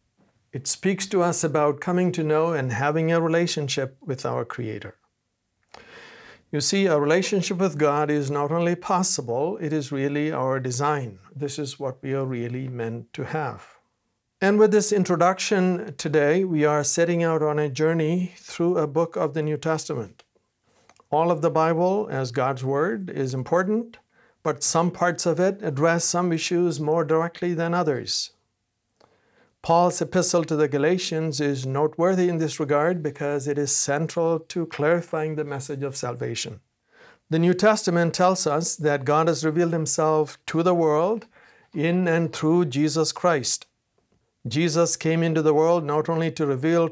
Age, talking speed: 60-79, 160 wpm